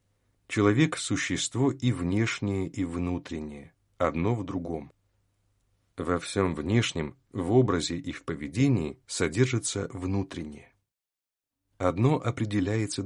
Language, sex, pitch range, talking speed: Russian, male, 90-115 Hz, 95 wpm